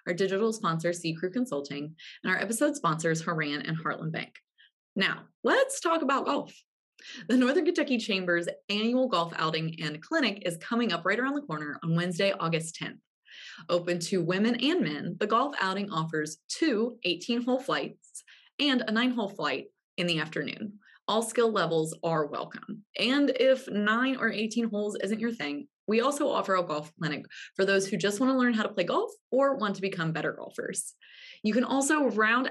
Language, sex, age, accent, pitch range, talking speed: English, female, 20-39, American, 165-240 Hz, 180 wpm